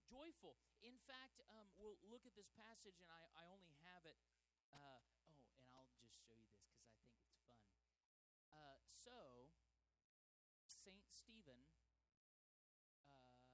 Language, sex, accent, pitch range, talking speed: English, male, American, 105-175 Hz, 145 wpm